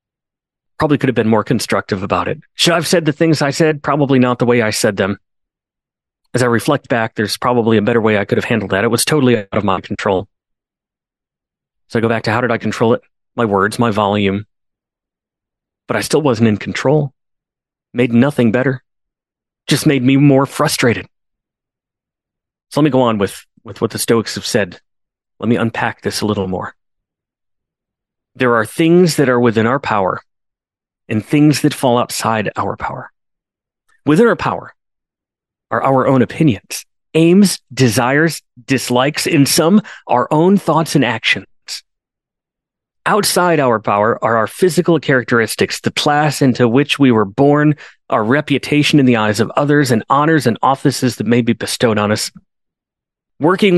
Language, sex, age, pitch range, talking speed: English, male, 30-49, 115-150 Hz, 175 wpm